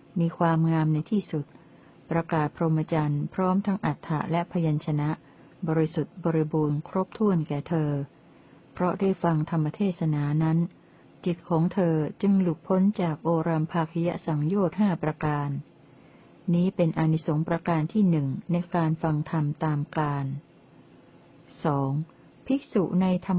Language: Thai